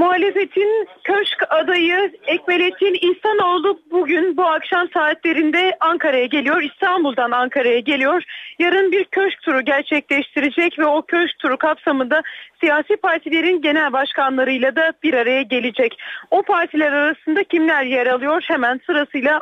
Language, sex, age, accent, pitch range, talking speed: Turkish, female, 40-59, native, 265-345 Hz, 125 wpm